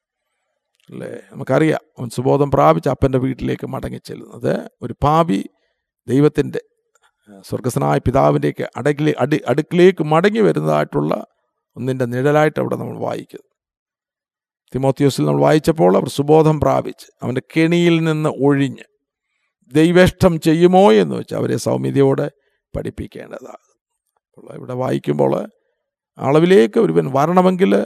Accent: native